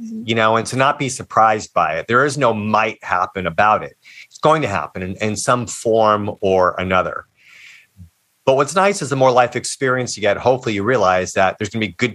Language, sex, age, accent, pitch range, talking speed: English, male, 30-49, American, 100-125 Hz, 220 wpm